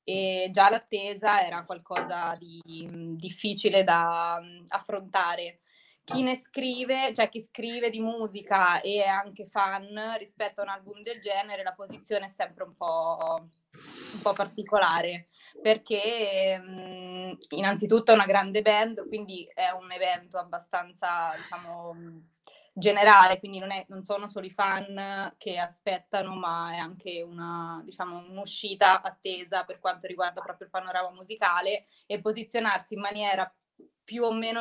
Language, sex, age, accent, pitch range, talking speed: Italian, female, 20-39, native, 180-210 Hz, 145 wpm